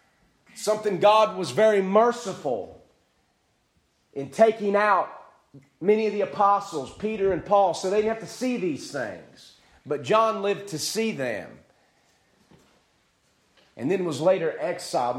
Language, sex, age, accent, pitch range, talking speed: English, male, 40-59, American, 160-210 Hz, 135 wpm